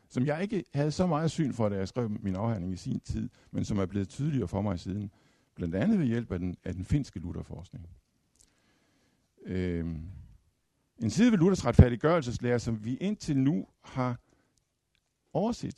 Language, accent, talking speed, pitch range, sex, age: Danish, native, 175 wpm, 90-115 Hz, male, 60-79